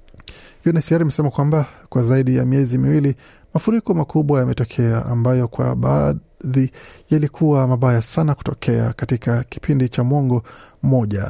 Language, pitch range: Swahili, 120-140 Hz